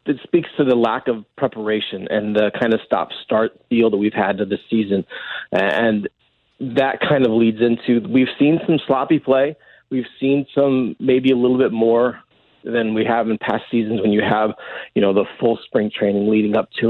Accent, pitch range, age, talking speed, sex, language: American, 115-145 Hz, 40-59, 200 wpm, male, English